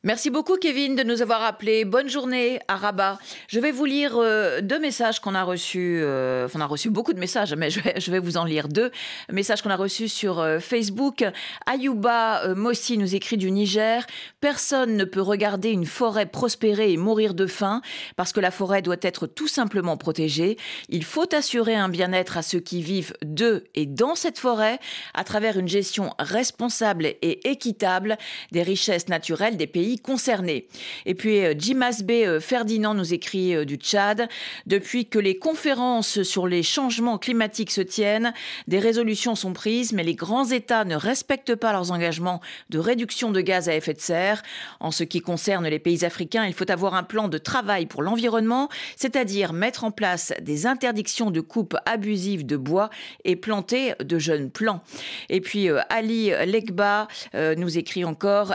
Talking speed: 185 wpm